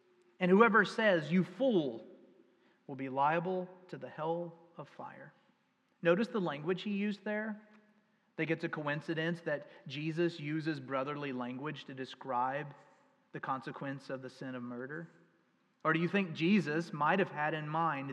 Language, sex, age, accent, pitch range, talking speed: English, male, 40-59, American, 135-180 Hz, 155 wpm